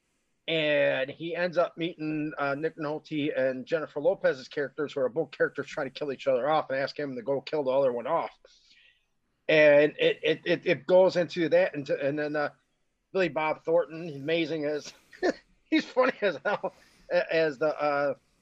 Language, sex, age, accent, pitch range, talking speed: English, male, 30-49, American, 145-175 Hz, 180 wpm